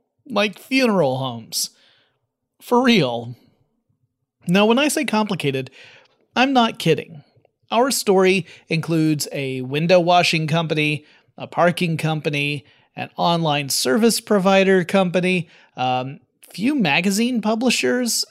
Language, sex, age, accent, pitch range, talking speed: English, male, 30-49, American, 145-205 Hz, 105 wpm